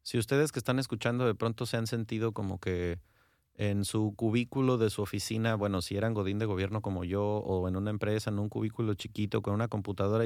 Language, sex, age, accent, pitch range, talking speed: English, male, 30-49, Mexican, 95-115 Hz, 215 wpm